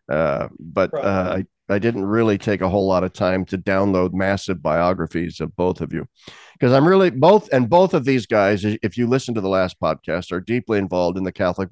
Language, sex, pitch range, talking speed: English, male, 95-125 Hz, 220 wpm